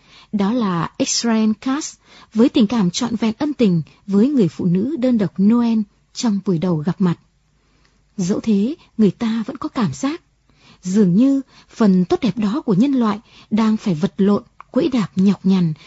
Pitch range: 190-250 Hz